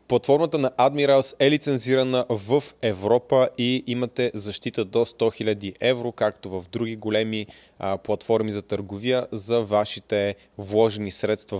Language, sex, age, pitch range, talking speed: Bulgarian, male, 20-39, 105-125 Hz, 130 wpm